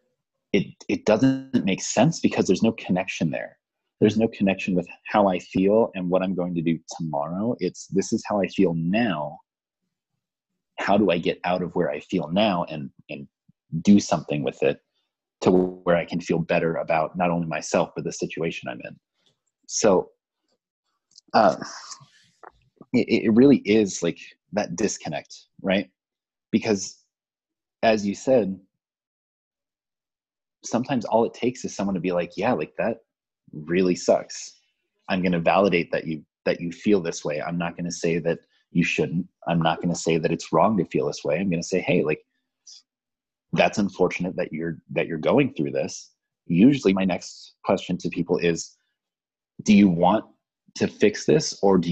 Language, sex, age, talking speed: English, male, 30-49, 175 wpm